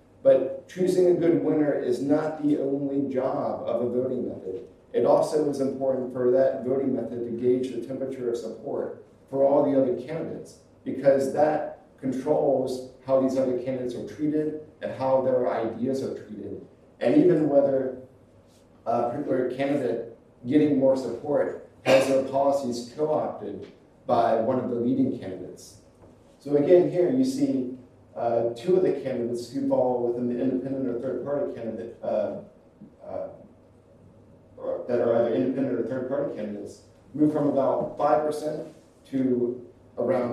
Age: 50-69